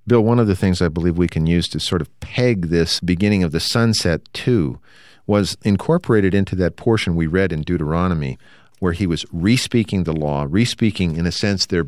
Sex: male